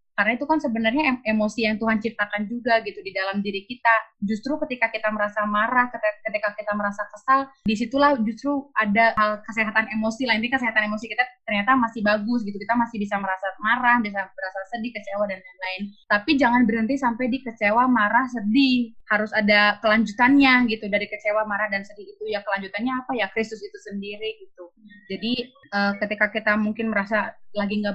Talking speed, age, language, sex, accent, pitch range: 175 wpm, 20-39, Indonesian, female, native, 205-235 Hz